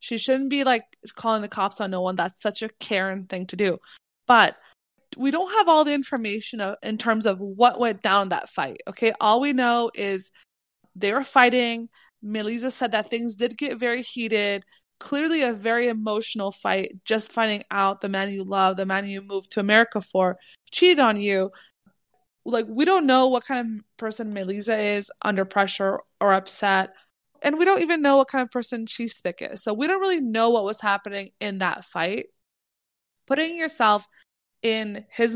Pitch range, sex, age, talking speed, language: 200-250 Hz, female, 20-39, 190 wpm, English